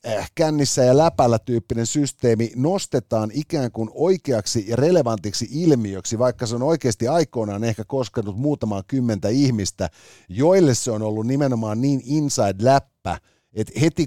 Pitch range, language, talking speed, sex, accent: 110-135 Hz, Finnish, 135 wpm, male, native